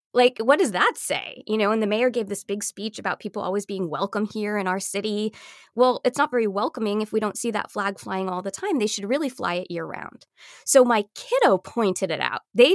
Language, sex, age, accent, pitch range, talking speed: English, female, 20-39, American, 190-245 Hz, 245 wpm